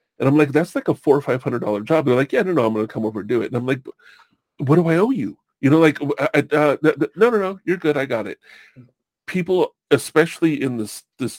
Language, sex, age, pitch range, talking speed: English, female, 40-59, 120-160 Hz, 270 wpm